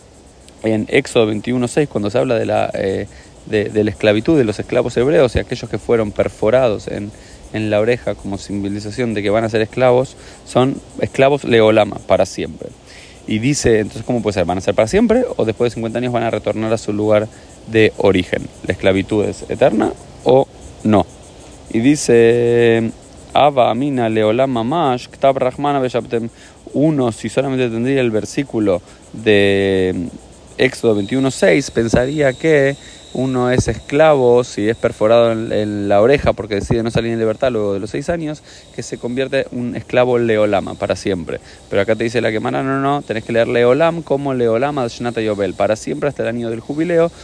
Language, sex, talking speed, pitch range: Spanish, male, 175 wpm, 105-125 Hz